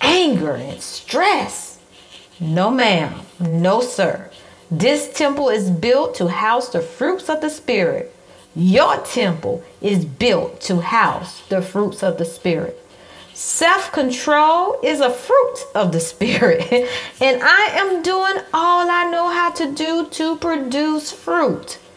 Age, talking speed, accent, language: 40-59, 135 wpm, American, English